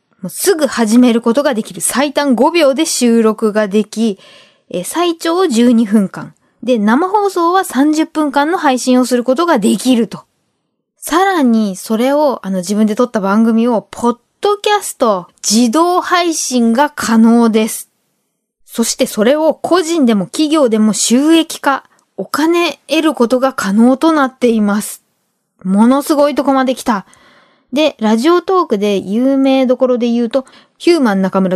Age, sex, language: 20-39, female, Japanese